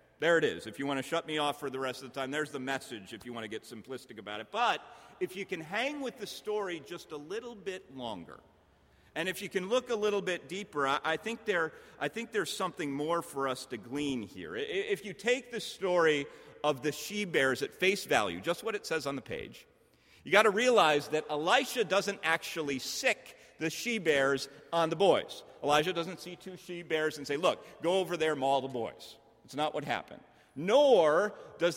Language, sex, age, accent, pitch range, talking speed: English, male, 40-59, American, 140-205 Hz, 215 wpm